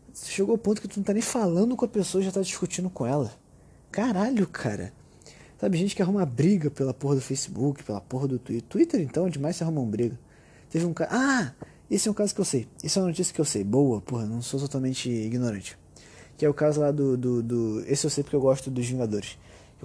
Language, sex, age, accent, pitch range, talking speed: Portuguese, male, 20-39, Brazilian, 120-160 Hz, 250 wpm